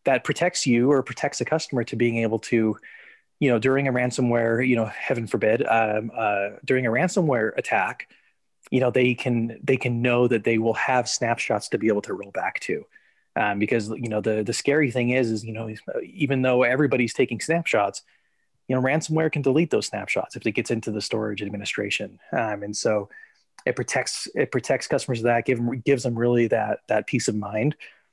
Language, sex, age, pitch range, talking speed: English, male, 20-39, 115-135 Hz, 205 wpm